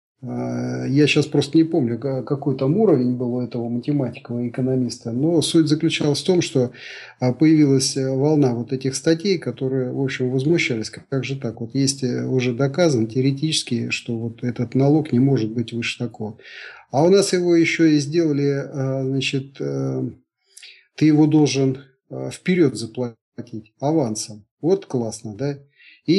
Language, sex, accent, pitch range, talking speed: Russian, male, native, 120-145 Hz, 145 wpm